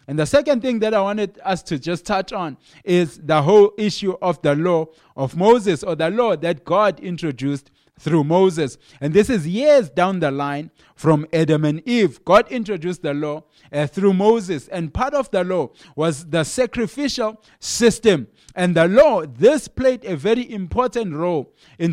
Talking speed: 180 wpm